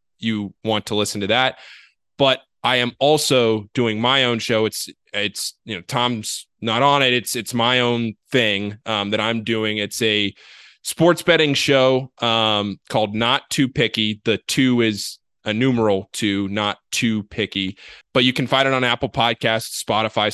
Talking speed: 175 wpm